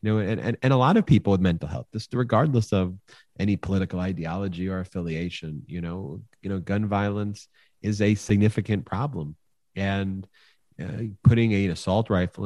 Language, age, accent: English, 30-49, American